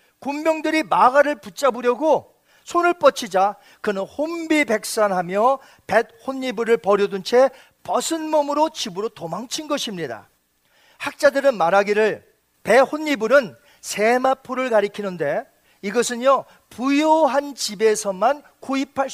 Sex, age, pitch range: male, 40-59, 205-280 Hz